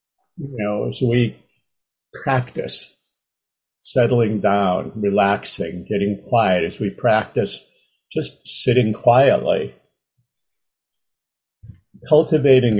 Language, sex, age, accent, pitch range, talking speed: English, male, 50-69, American, 100-125 Hz, 80 wpm